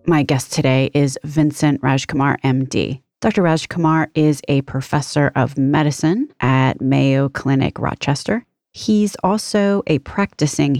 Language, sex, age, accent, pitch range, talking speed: English, female, 30-49, American, 145-185 Hz, 120 wpm